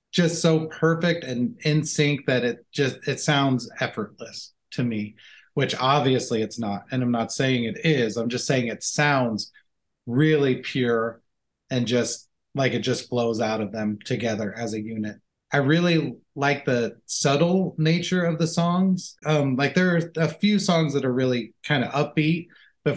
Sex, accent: male, American